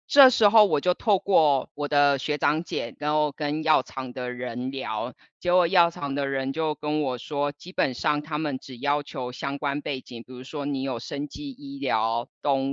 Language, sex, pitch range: Chinese, female, 135-160 Hz